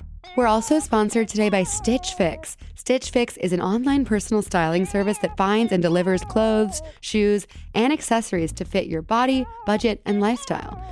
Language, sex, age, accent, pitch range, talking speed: English, female, 20-39, American, 180-225 Hz, 165 wpm